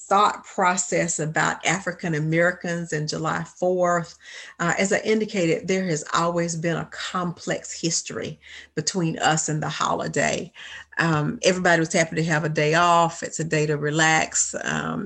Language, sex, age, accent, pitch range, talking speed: English, female, 50-69, American, 155-175 Hz, 155 wpm